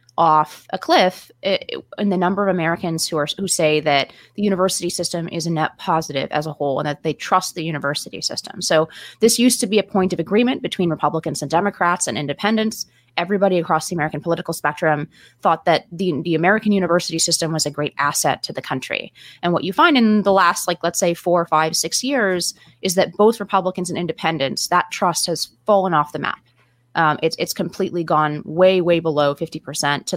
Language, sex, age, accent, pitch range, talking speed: English, female, 20-39, American, 150-185 Hz, 205 wpm